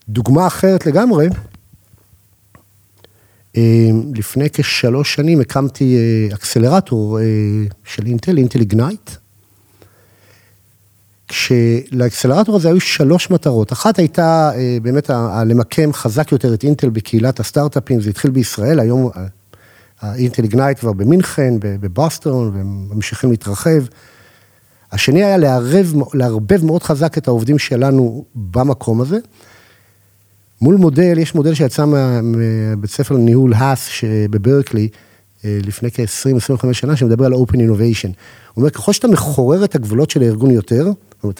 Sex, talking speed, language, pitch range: male, 115 wpm, Hebrew, 110-150 Hz